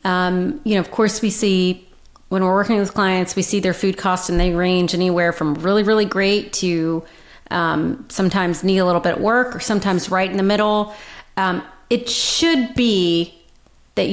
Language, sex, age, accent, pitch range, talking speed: English, female, 30-49, American, 180-210 Hz, 190 wpm